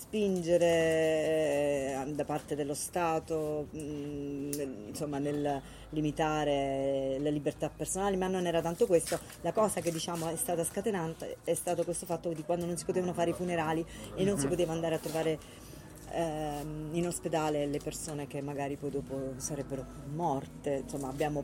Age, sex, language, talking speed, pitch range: 30-49, female, Italian, 155 wpm, 150-210 Hz